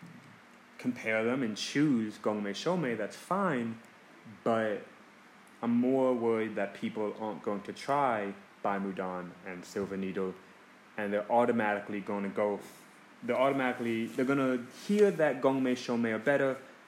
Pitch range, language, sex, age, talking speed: 105-140 Hz, English, male, 20-39, 140 wpm